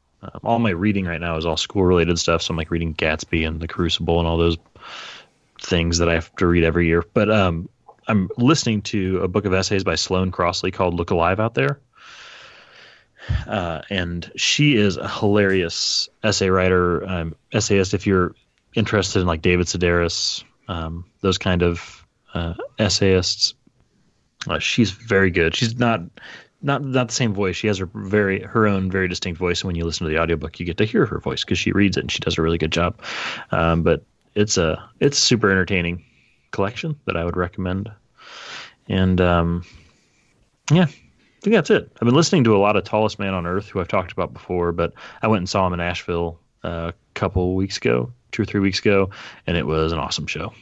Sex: male